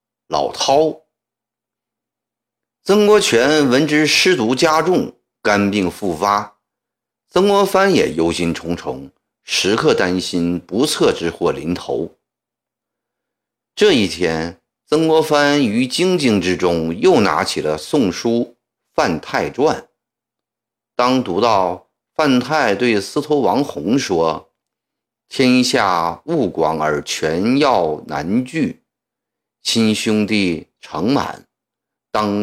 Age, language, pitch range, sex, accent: 50-69, Chinese, 90-145 Hz, male, native